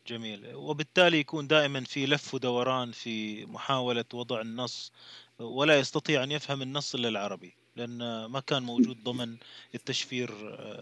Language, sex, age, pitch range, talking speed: Arabic, male, 30-49, 125-160 Hz, 130 wpm